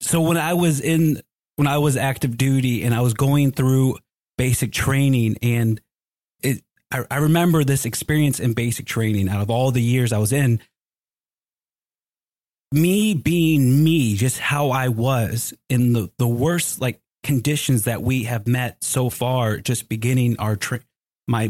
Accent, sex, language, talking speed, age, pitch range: American, male, English, 160 wpm, 30-49, 120-145 Hz